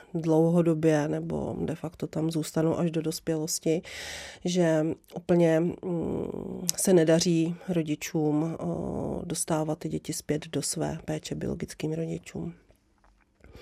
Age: 40-59